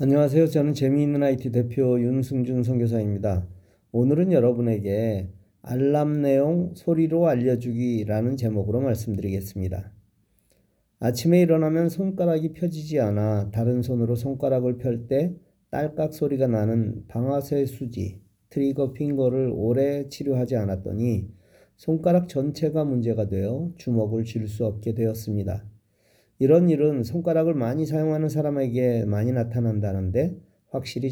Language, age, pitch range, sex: Korean, 40-59, 110-140 Hz, male